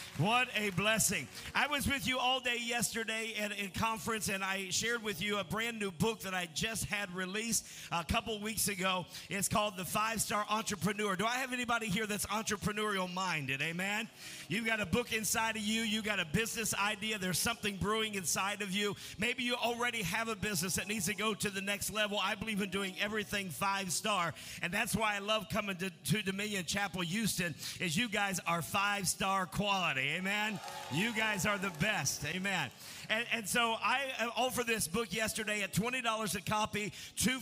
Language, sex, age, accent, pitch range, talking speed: English, male, 50-69, American, 190-225 Hz, 190 wpm